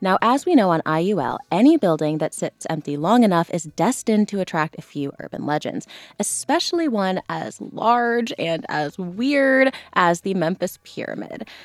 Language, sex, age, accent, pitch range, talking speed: English, female, 20-39, American, 155-230 Hz, 165 wpm